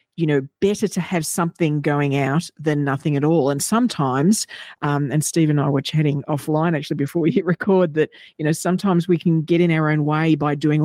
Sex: female